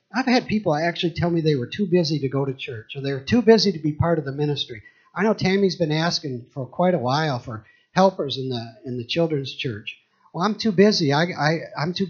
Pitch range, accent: 145-190 Hz, American